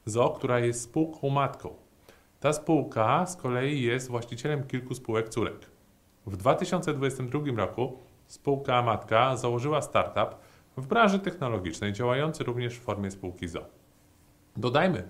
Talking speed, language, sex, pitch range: 125 wpm, Polish, male, 110-135 Hz